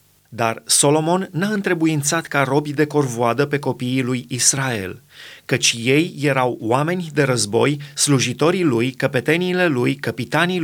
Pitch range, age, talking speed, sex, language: 130-160 Hz, 30-49, 130 wpm, male, Romanian